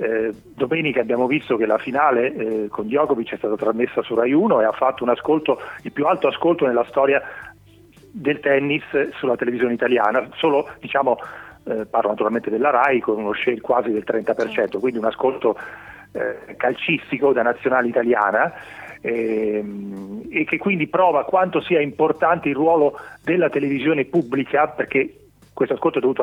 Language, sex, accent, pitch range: Italian, male, native, 125-165 Hz